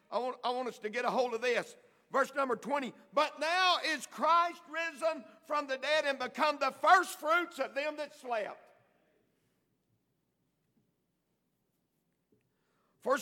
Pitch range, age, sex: 200-310 Hz, 50-69, male